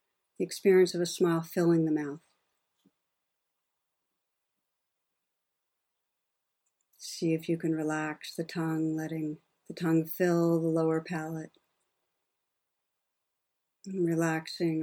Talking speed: 95 wpm